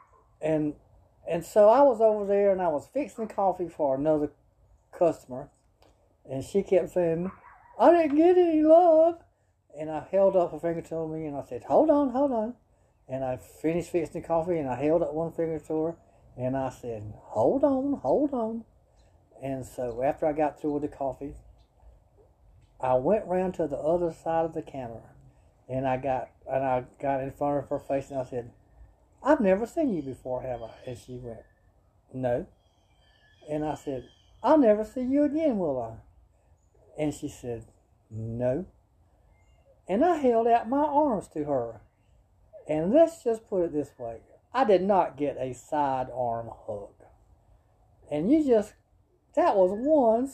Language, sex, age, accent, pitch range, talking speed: English, male, 60-79, American, 125-205 Hz, 175 wpm